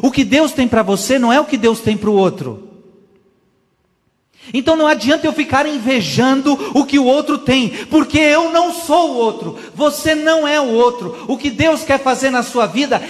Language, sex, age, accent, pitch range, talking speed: Portuguese, male, 40-59, Brazilian, 165-250 Hz, 205 wpm